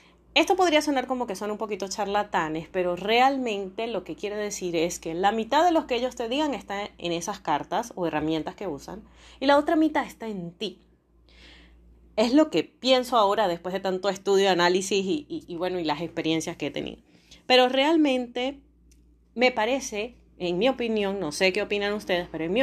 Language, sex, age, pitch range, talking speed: Spanish, female, 30-49, 180-255 Hz, 200 wpm